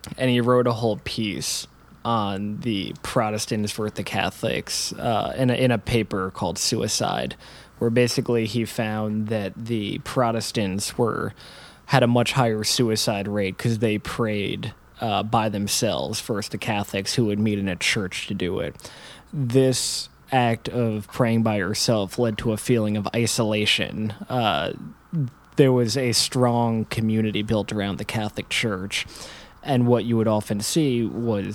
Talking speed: 155 wpm